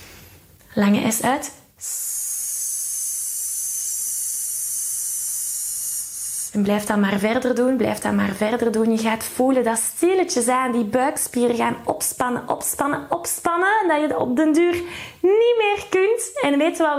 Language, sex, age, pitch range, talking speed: Dutch, female, 20-39, 205-295 Hz, 140 wpm